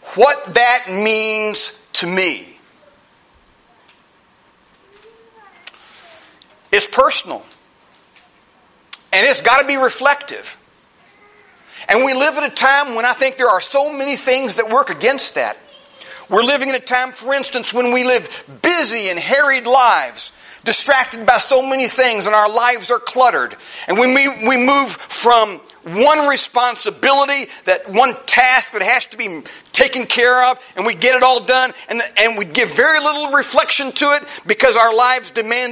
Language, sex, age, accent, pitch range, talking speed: English, male, 40-59, American, 230-280 Hz, 155 wpm